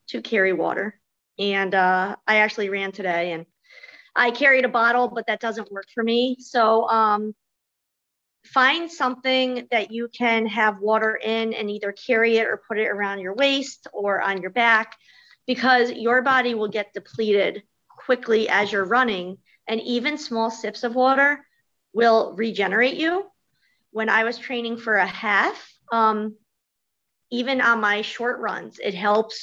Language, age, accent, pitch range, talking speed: English, 40-59, American, 205-250 Hz, 160 wpm